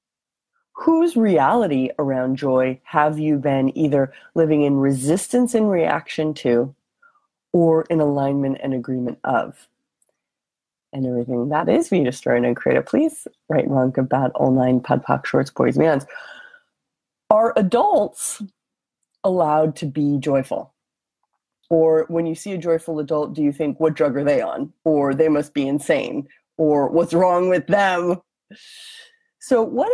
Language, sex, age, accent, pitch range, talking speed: English, female, 30-49, American, 145-200 Hz, 145 wpm